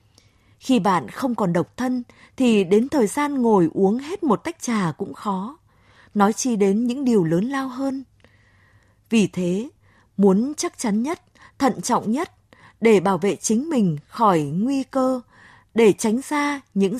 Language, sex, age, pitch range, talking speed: Vietnamese, female, 20-39, 175-255 Hz, 165 wpm